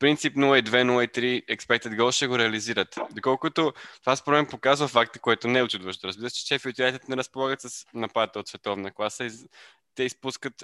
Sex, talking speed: male, 190 wpm